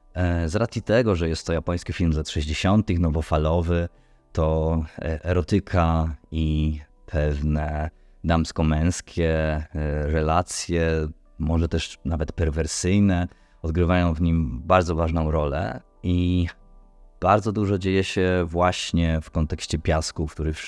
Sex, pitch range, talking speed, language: male, 80-90 Hz, 115 wpm, Polish